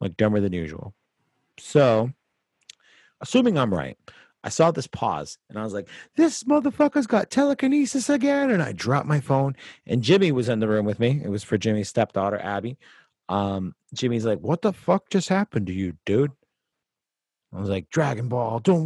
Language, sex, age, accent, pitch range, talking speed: English, male, 30-49, American, 105-140 Hz, 180 wpm